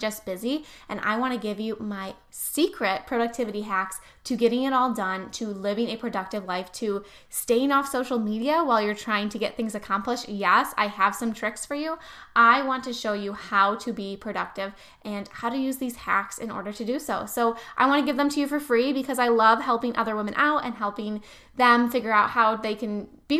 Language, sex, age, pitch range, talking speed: English, female, 10-29, 210-245 Hz, 220 wpm